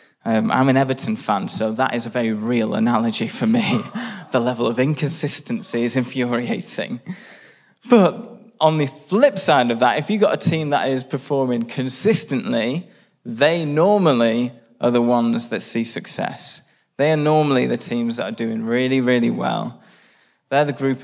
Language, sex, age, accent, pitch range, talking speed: English, male, 20-39, British, 120-165 Hz, 165 wpm